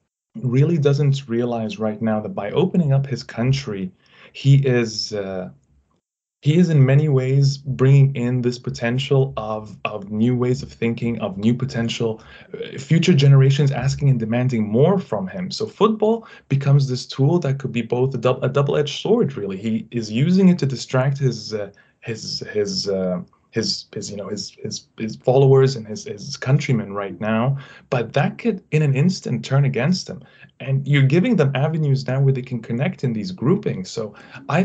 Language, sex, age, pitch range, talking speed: English, male, 20-39, 115-140 Hz, 180 wpm